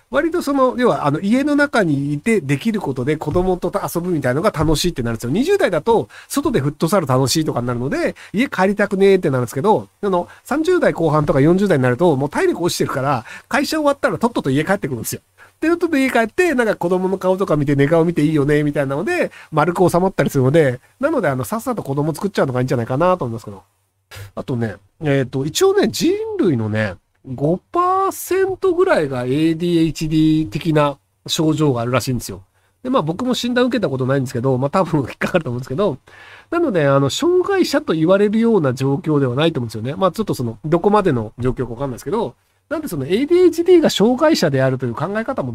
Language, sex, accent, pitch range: Japanese, male, native, 135-215 Hz